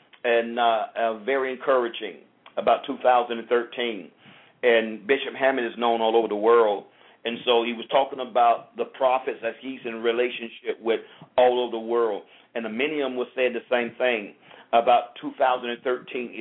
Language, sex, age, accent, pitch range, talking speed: English, male, 50-69, American, 120-155 Hz, 160 wpm